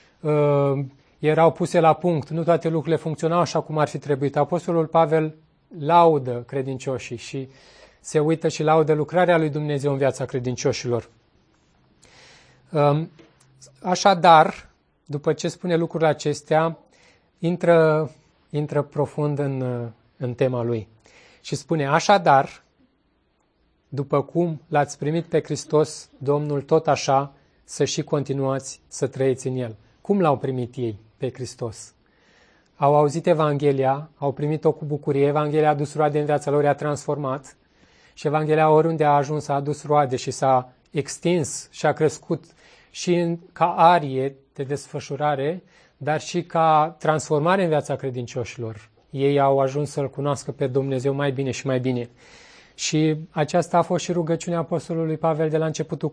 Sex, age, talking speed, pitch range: male, 30-49, 140 wpm, 135-160 Hz